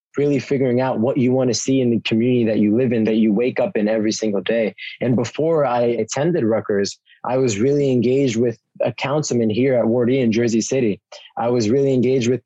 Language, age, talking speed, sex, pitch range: English, 20-39, 225 wpm, male, 110-130 Hz